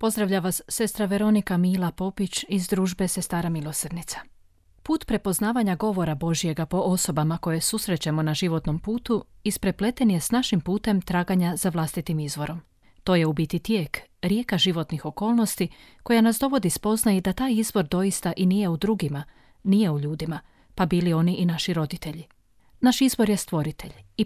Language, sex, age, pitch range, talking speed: Croatian, female, 30-49, 165-210 Hz, 160 wpm